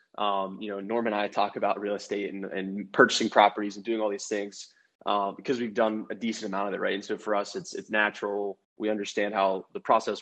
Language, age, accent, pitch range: English, 20-39, American, 100-110 Hz